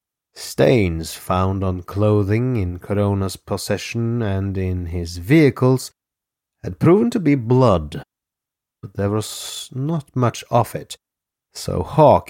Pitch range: 90-125 Hz